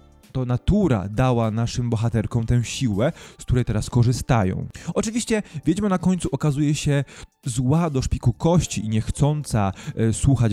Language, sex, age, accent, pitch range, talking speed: Polish, male, 20-39, native, 105-140 Hz, 135 wpm